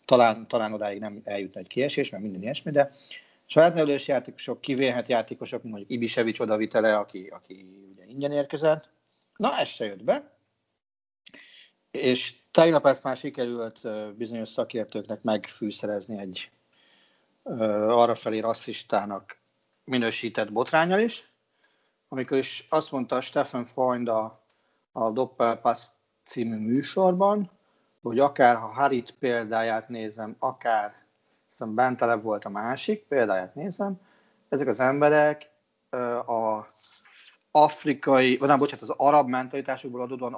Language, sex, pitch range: Hungarian, male, 115-145 Hz